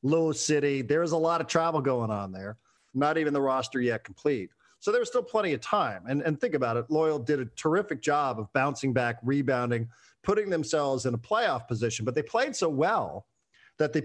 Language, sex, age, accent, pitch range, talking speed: English, male, 50-69, American, 125-160 Hz, 210 wpm